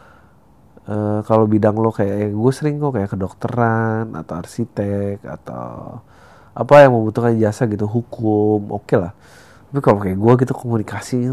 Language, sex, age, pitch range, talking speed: Indonesian, male, 30-49, 105-120 Hz, 150 wpm